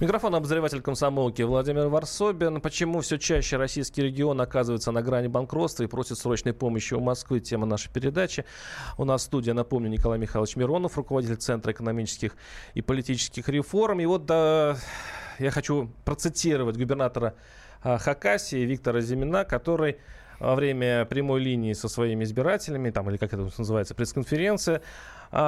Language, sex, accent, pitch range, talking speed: Russian, male, native, 120-155 Hz, 140 wpm